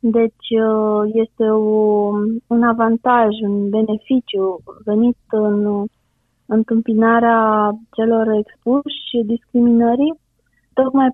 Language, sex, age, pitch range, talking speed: Romanian, female, 20-39, 205-235 Hz, 80 wpm